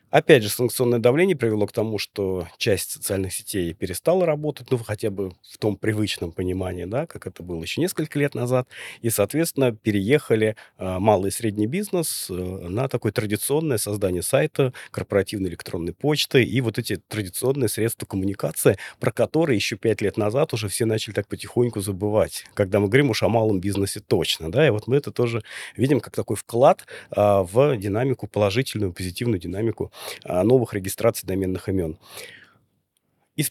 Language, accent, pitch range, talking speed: Russian, native, 100-125 Hz, 160 wpm